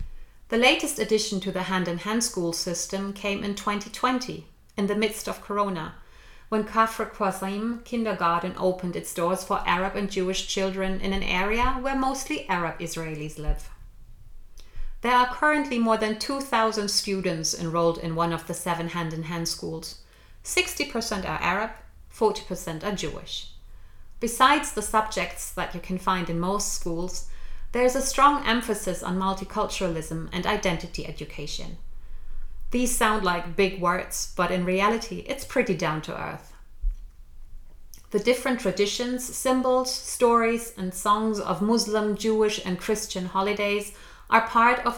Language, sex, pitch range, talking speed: English, female, 175-225 Hz, 140 wpm